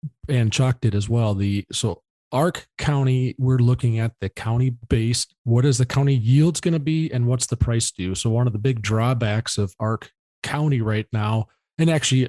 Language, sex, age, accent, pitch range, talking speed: English, male, 40-59, American, 110-135 Hz, 200 wpm